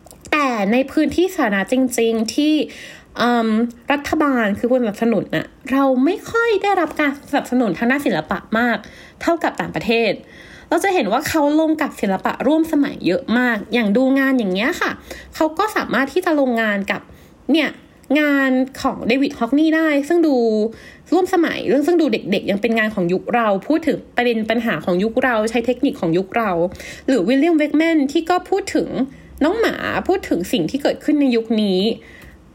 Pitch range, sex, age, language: 225-295 Hz, female, 20-39, Thai